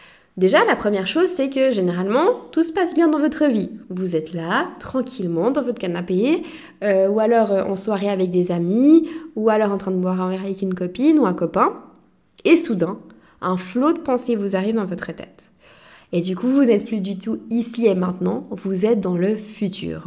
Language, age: French, 20-39